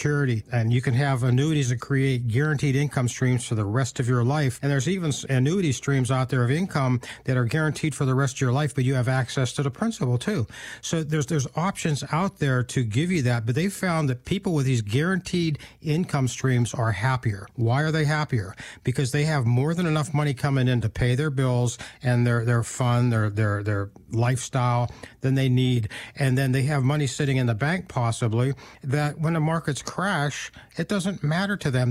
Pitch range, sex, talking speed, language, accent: 125-155 Hz, male, 210 wpm, English, American